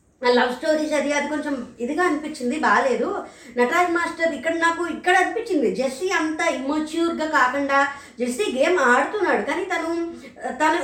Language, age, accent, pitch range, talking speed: Telugu, 20-39, native, 265-335 Hz, 135 wpm